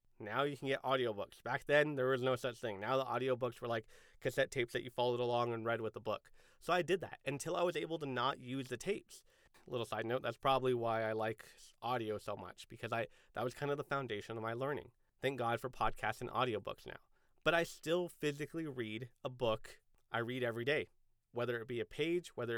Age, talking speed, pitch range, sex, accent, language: 30-49, 230 wpm, 115-145 Hz, male, American, English